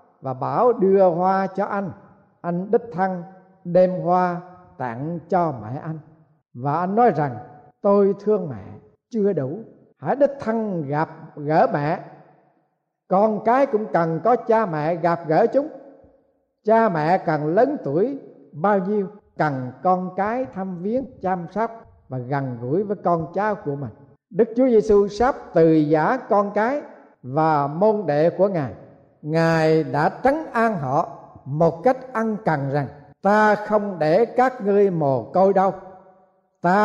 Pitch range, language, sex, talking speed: 160-220 Hz, Vietnamese, male, 155 wpm